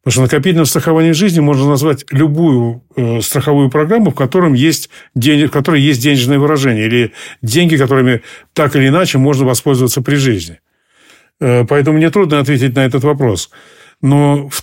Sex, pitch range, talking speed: male, 125-155 Hz, 145 wpm